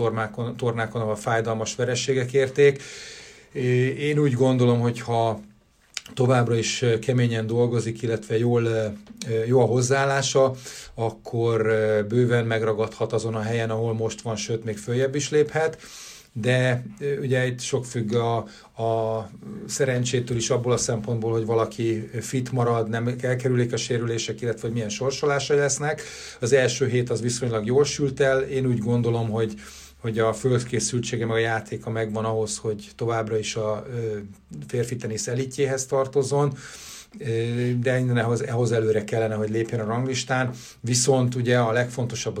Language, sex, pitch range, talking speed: Hungarian, male, 110-125 Hz, 135 wpm